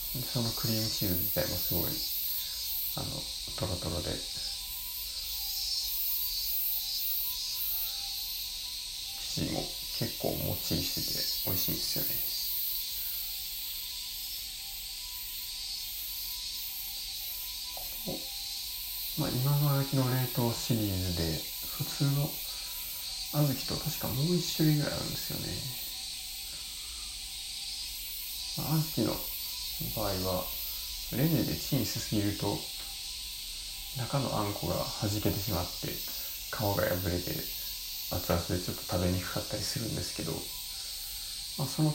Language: Japanese